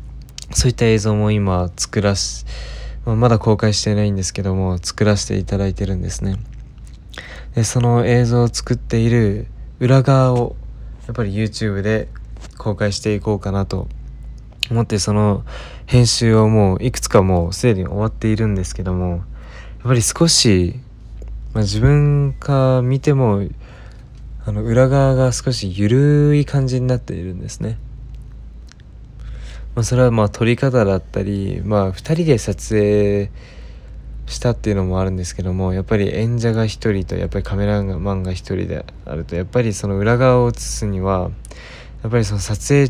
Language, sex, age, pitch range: Japanese, male, 20-39, 95-120 Hz